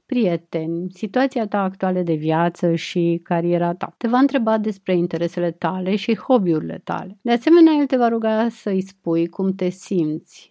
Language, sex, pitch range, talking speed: Romanian, female, 170-205 Hz, 165 wpm